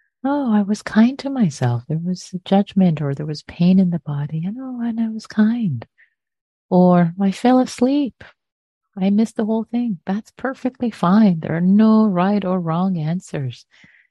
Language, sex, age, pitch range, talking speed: English, female, 30-49, 145-205 Hz, 185 wpm